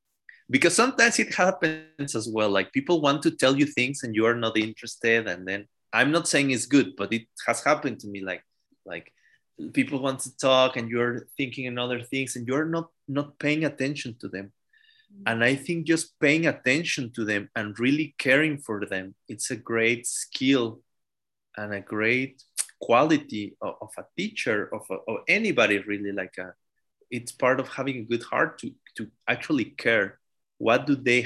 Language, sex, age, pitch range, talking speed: English, male, 30-49, 105-140 Hz, 185 wpm